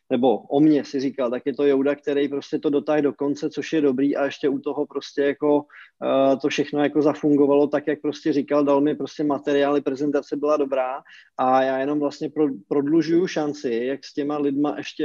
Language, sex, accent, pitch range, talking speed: Czech, male, native, 140-160 Hz, 210 wpm